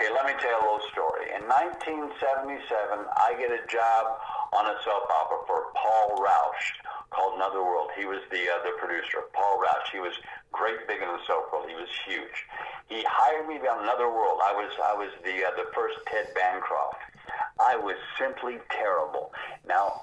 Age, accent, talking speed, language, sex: 50-69, American, 195 wpm, English, male